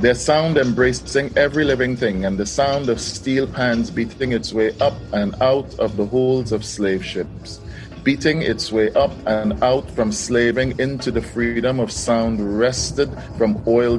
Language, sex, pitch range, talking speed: Dutch, male, 105-130 Hz, 170 wpm